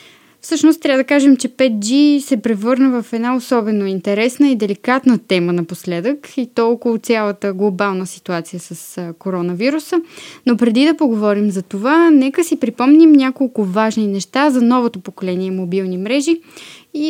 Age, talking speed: 20-39, 145 wpm